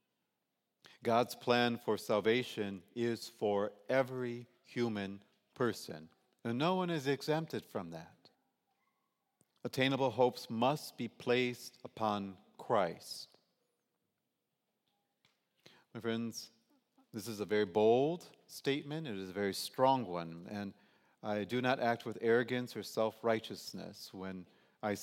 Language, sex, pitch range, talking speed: English, male, 100-125 Hz, 115 wpm